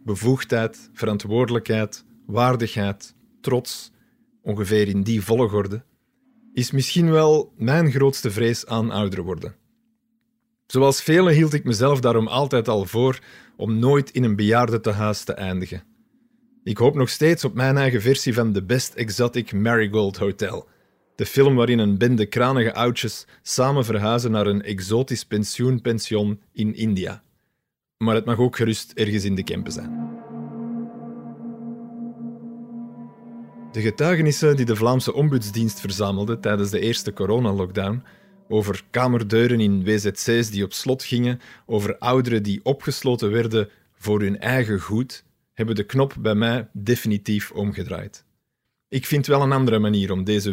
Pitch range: 105-135 Hz